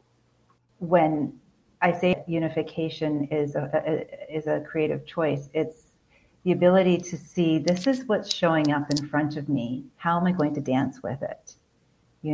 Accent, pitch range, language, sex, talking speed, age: American, 145-160 Hz, English, female, 165 wpm, 40-59